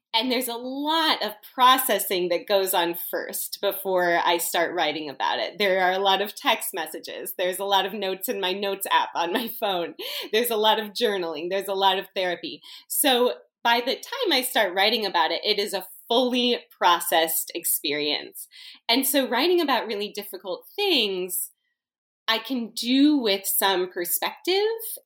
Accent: American